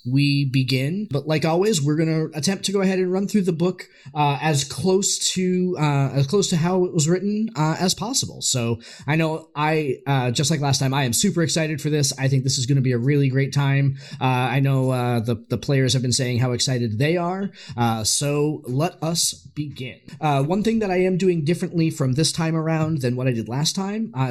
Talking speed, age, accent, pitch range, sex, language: 230 wpm, 20-39, American, 130-165 Hz, male, English